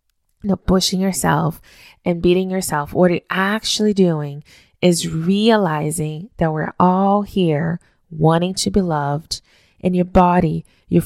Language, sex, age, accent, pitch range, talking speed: English, female, 20-39, American, 170-190 Hz, 140 wpm